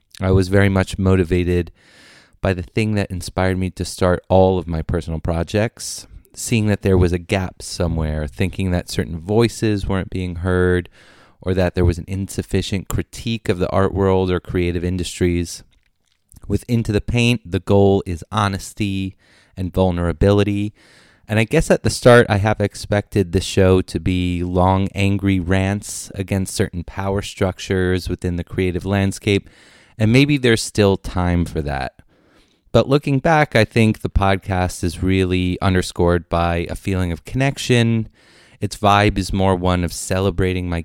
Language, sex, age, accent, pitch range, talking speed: English, male, 30-49, American, 90-105 Hz, 160 wpm